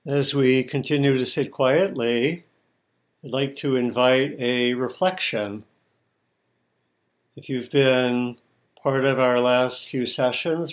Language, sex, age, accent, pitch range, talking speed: English, male, 60-79, American, 120-140 Hz, 115 wpm